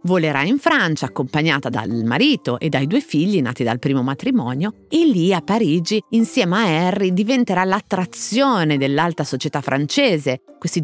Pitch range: 140-225 Hz